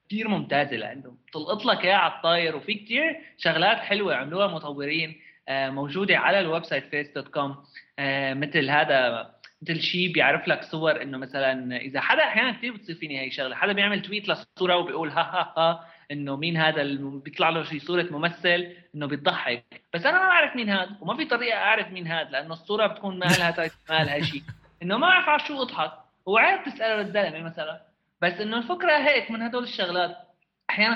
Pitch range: 145-205 Hz